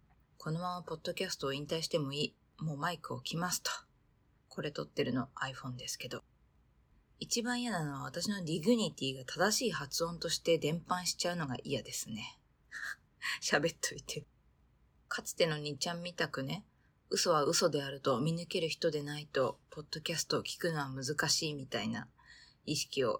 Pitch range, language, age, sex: 140-175 Hz, Japanese, 20-39, female